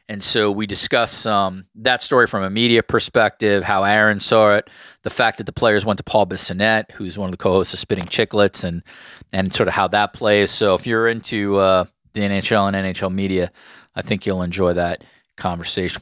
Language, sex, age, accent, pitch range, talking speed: English, male, 30-49, American, 95-105 Hz, 205 wpm